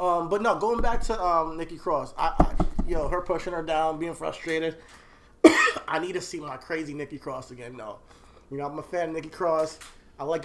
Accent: American